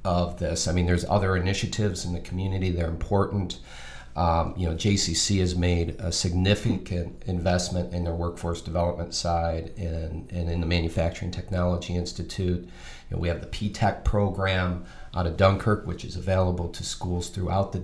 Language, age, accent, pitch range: English, 40-59, American, 85-100 Hz